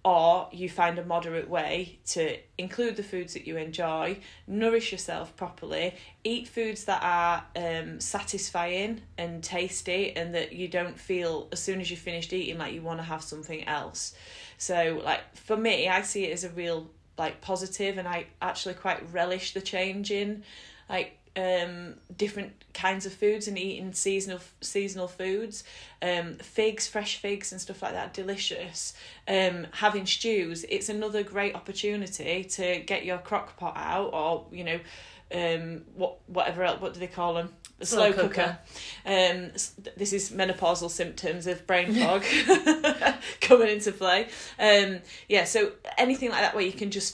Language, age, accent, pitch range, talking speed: English, 10-29, British, 175-205 Hz, 165 wpm